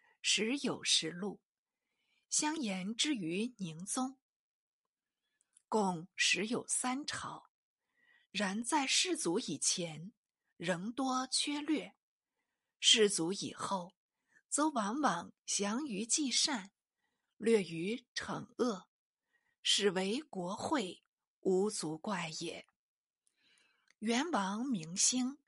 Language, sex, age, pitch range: Chinese, female, 50-69, 185-260 Hz